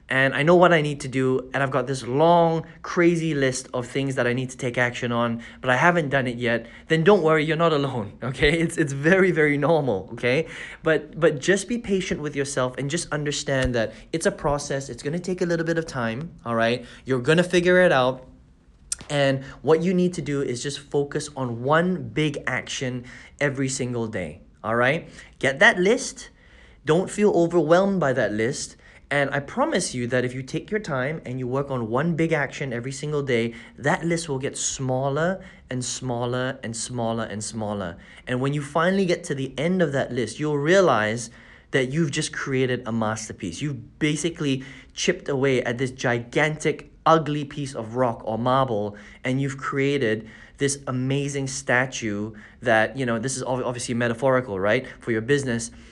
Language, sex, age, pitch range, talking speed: English, male, 20-39, 120-155 Hz, 190 wpm